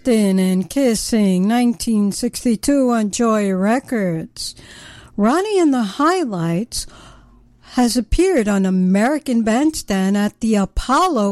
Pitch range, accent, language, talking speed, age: 215-285 Hz, American, English, 95 wpm, 60-79